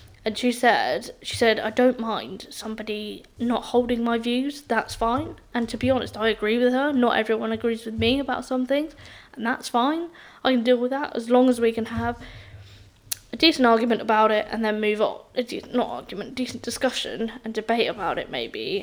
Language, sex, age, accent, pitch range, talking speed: English, female, 10-29, British, 215-245 Hz, 205 wpm